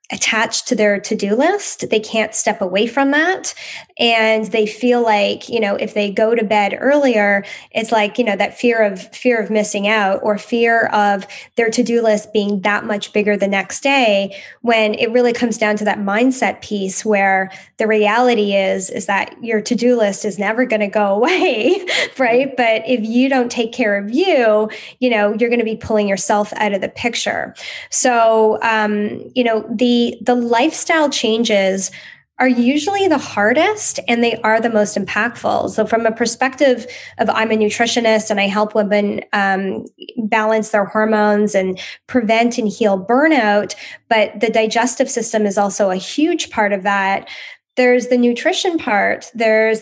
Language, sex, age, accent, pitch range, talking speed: English, female, 10-29, American, 210-245 Hz, 175 wpm